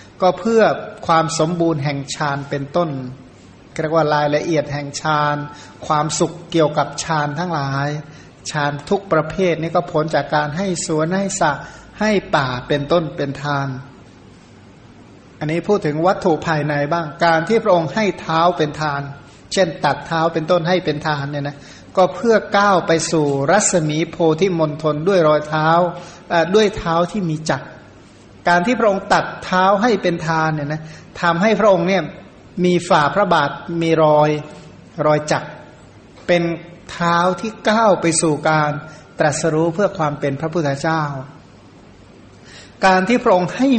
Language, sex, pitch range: Thai, male, 150-180 Hz